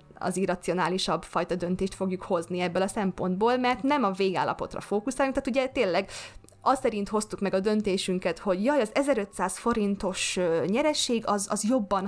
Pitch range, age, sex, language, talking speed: 185-220 Hz, 20-39, female, Hungarian, 160 wpm